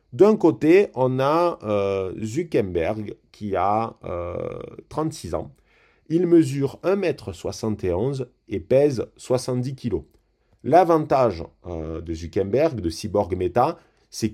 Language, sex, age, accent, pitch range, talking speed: French, male, 30-49, French, 90-120 Hz, 115 wpm